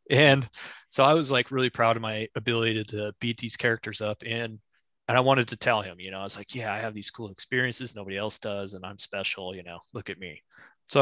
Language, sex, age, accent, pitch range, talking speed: English, male, 20-39, American, 105-125 Hz, 250 wpm